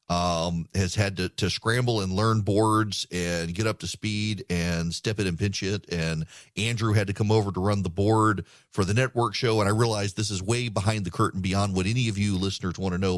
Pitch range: 95-130 Hz